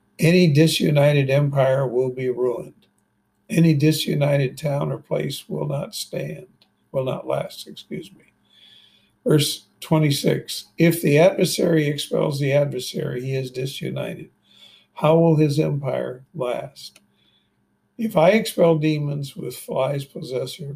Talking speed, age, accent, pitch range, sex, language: 120 wpm, 60-79, American, 135-160 Hz, male, English